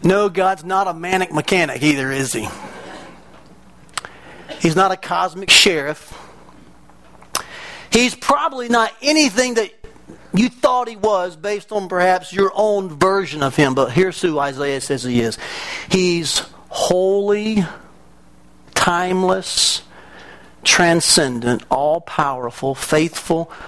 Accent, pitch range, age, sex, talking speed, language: American, 140-220 Hz, 40-59, male, 110 wpm, English